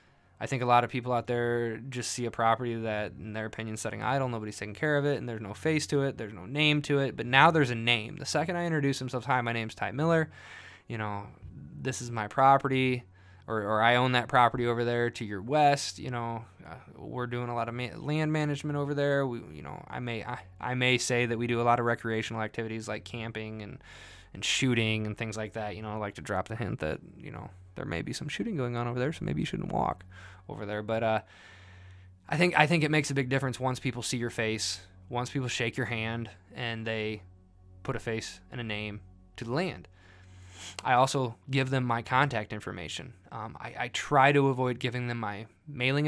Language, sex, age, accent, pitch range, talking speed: English, male, 20-39, American, 105-130 Hz, 235 wpm